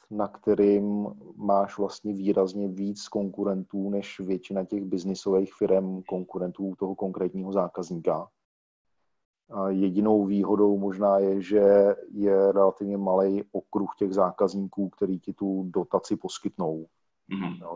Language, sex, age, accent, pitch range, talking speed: Czech, male, 40-59, native, 95-105 Hz, 115 wpm